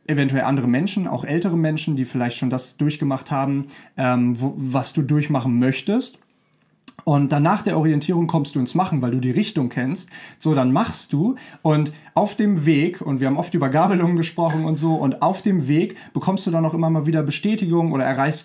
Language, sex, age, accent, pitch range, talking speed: German, male, 30-49, German, 135-165 Hz, 200 wpm